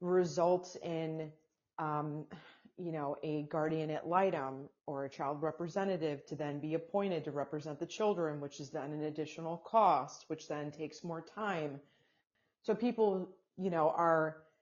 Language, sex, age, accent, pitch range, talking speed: English, female, 30-49, American, 150-185 Hz, 150 wpm